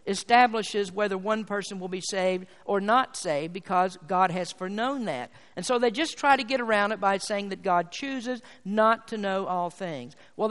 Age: 50-69